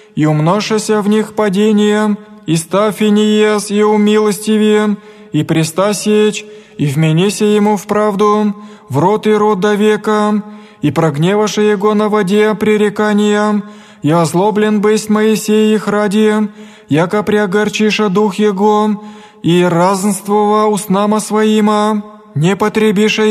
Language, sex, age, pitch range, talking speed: Greek, male, 20-39, 205-215 Hz, 115 wpm